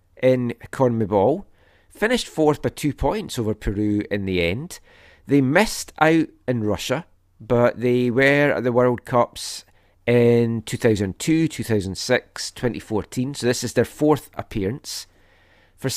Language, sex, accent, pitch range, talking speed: English, male, British, 105-135 Hz, 130 wpm